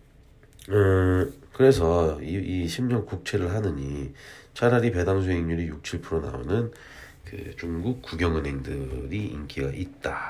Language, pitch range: Korean, 80-115 Hz